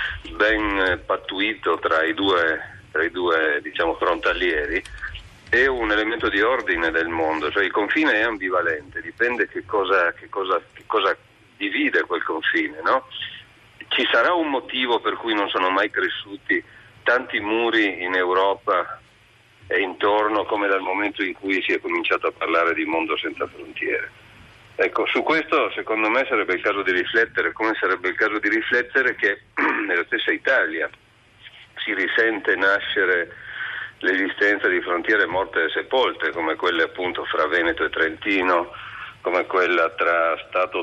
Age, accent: 40-59, native